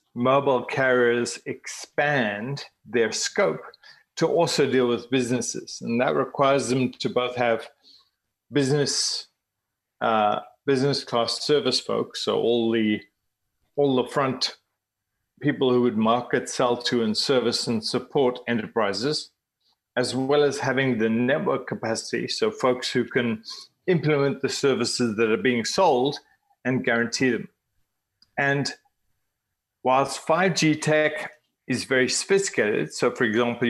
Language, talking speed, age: English, 125 wpm, 40-59